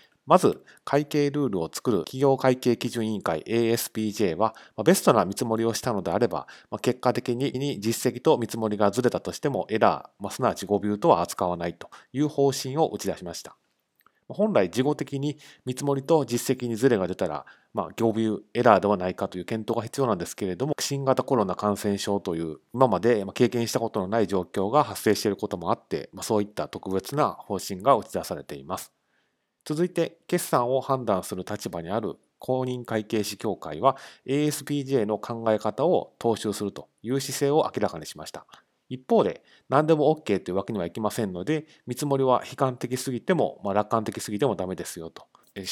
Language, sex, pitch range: Japanese, male, 105-135 Hz